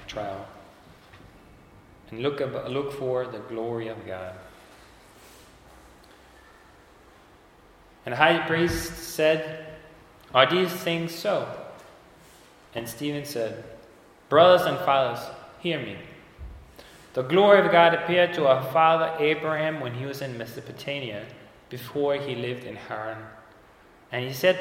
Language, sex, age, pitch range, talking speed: English, male, 30-49, 120-165 Hz, 115 wpm